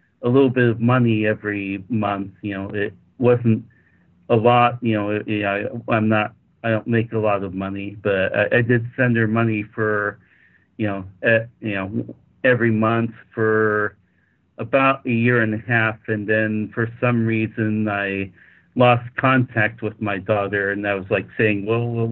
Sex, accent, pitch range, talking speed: male, American, 100-115 Hz, 170 wpm